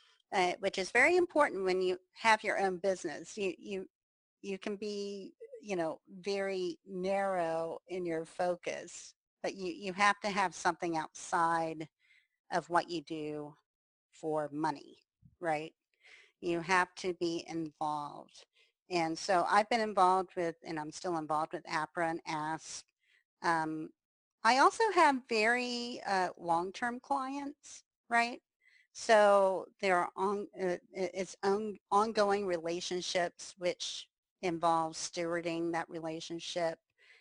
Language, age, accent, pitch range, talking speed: English, 40-59, American, 165-205 Hz, 130 wpm